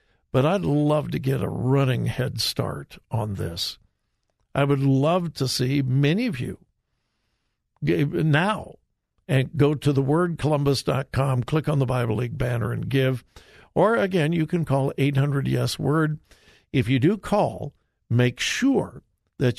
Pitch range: 125-170 Hz